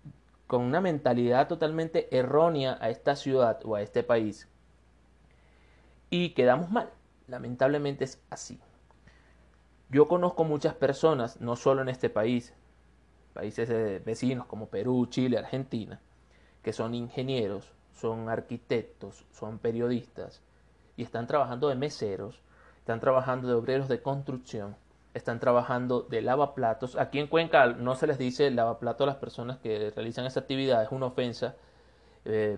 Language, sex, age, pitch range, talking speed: Spanish, male, 30-49, 110-135 Hz, 135 wpm